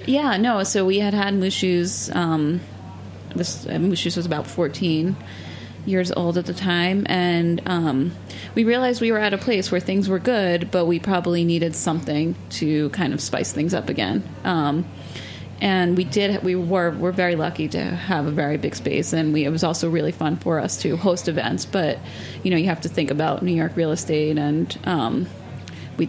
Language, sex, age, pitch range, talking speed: English, female, 30-49, 150-180 Hz, 195 wpm